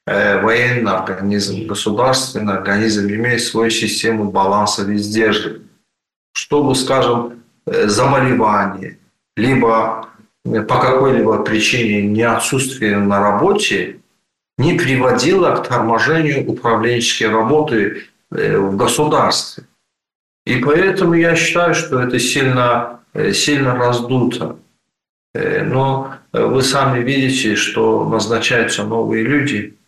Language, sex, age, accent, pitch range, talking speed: Ukrainian, male, 40-59, native, 110-135 Hz, 90 wpm